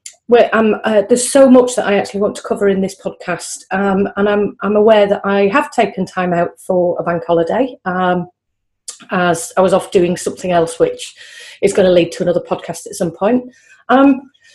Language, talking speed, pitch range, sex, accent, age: English, 205 wpm, 190-245 Hz, female, British, 30-49